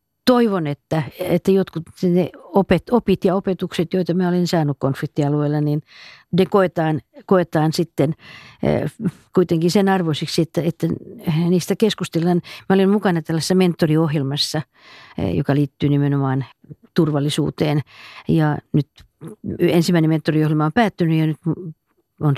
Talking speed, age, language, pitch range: 115 wpm, 50-69, Finnish, 145-175 Hz